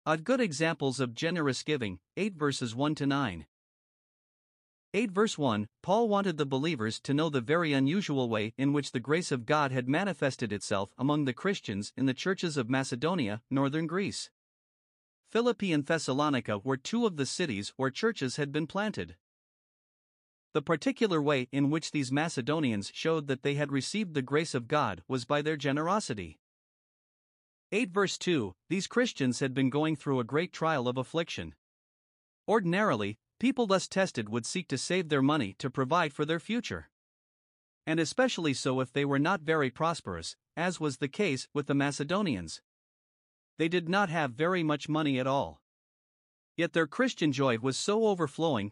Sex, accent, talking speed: male, American, 170 wpm